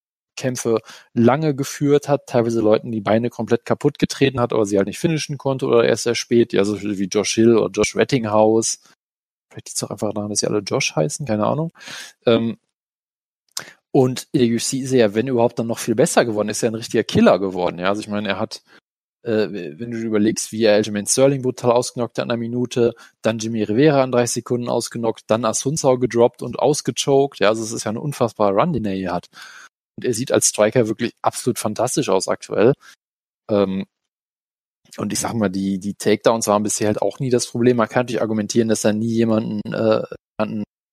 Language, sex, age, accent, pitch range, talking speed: German, male, 20-39, German, 105-125 Hz, 205 wpm